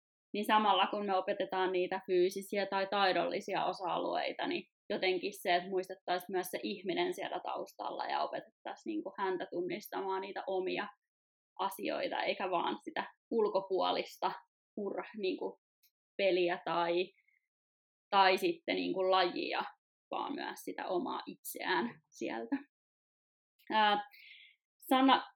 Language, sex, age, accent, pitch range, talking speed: Finnish, female, 20-39, native, 185-230 Hz, 100 wpm